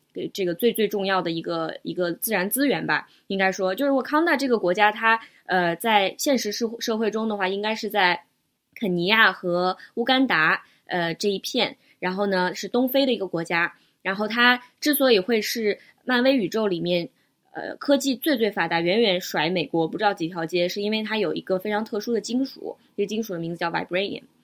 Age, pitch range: 20-39, 180-235 Hz